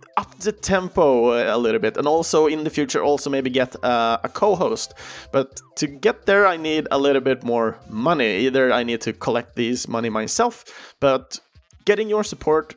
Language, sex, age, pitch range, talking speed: Swedish, male, 30-49, 115-165 Hz, 185 wpm